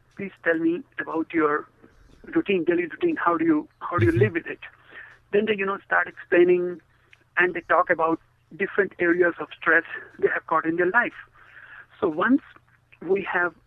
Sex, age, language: male, 60-79, English